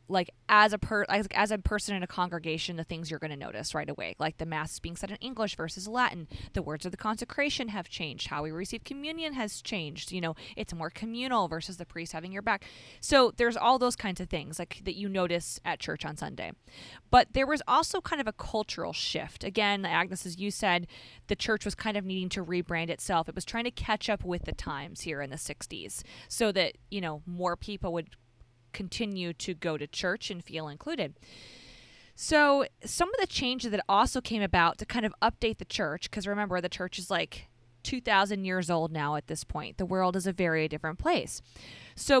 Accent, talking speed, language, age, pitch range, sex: American, 220 wpm, English, 20-39, 165-220 Hz, female